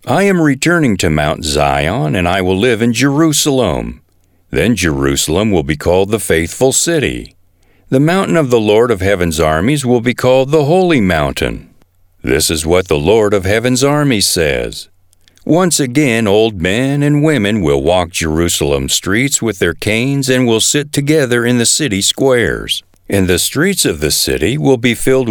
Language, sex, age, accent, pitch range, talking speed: English, male, 50-69, American, 90-145 Hz, 175 wpm